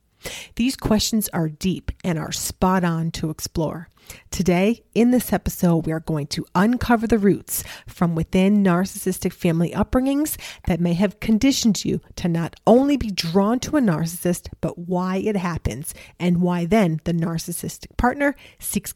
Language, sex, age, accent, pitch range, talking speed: English, female, 30-49, American, 170-215 Hz, 160 wpm